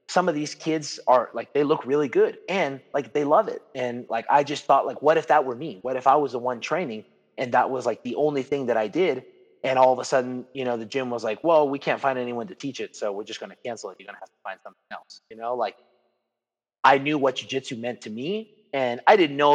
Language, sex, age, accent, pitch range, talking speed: English, male, 30-49, American, 120-145 Hz, 280 wpm